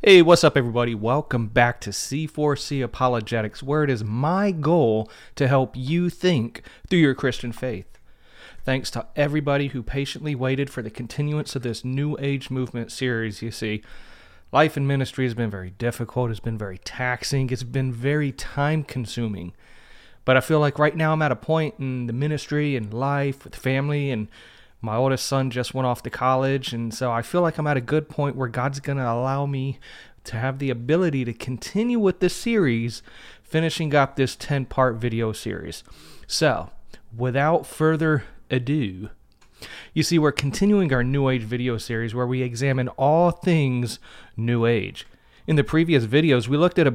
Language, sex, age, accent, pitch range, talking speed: English, male, 30-49, American, 120-150 Hz, 180 wpm